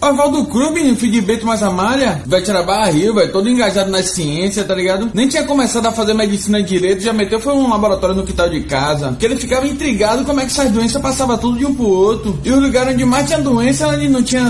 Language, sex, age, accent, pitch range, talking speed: English, male, 20-39, Brazilian, 195-245 Hz, 250 wpm